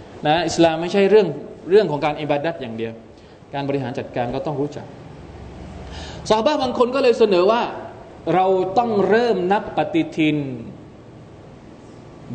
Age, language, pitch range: 20-39, Thai, 125-175 Hz